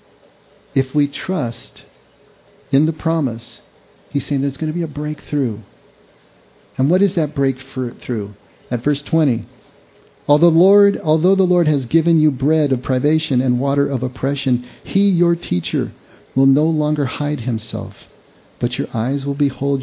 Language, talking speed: English, 150 wpm